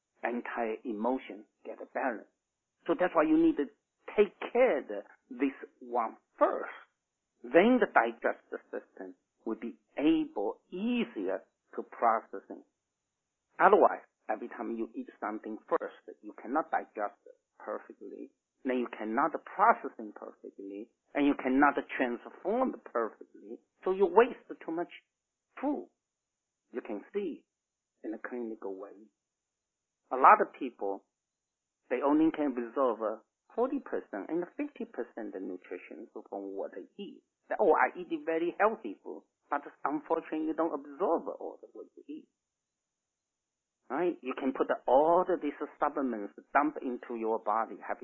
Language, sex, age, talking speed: English, male, 50-69, 135 wpm